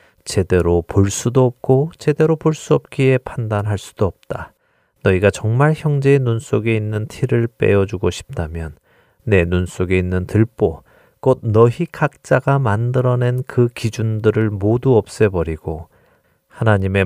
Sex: male